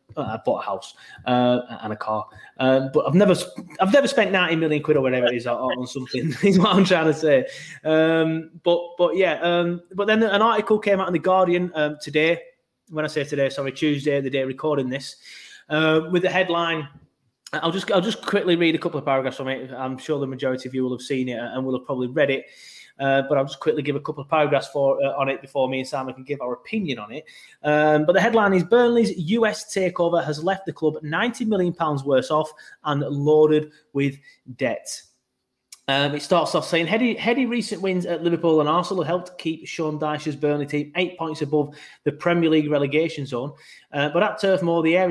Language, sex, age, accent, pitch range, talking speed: English, male, 20-39, British, 140-180 Hz, 220 wpm